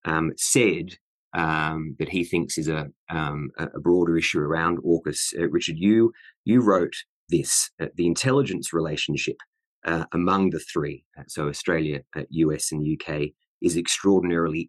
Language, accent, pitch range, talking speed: English, Australian, 80-95 Hz, 155 wpm